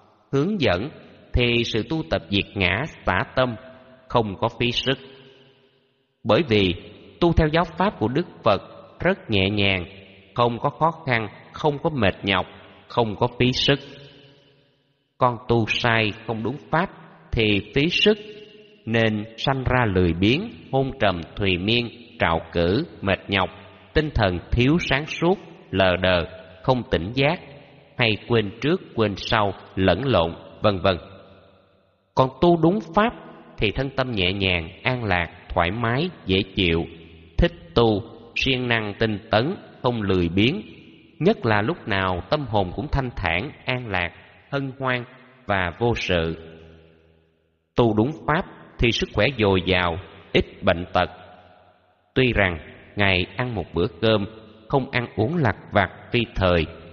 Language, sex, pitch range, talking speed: Vietnamese, male, 95-130 Hz, 150 wpm